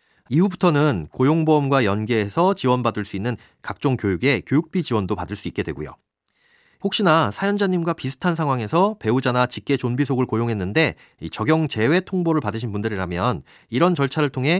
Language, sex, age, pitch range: Korean, male, 30-49, 105-165 Hz